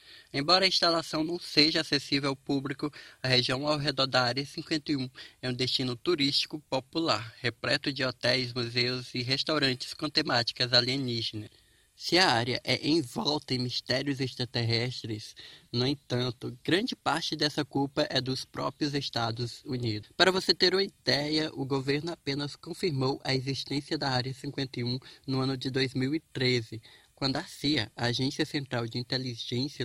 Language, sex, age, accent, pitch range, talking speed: Portuguese, male, 20-39, Brazilian, 125-150 Hz, 150 wpm